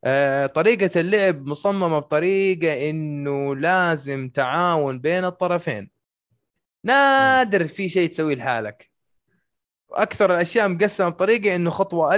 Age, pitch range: 20-39, 140-185 Hz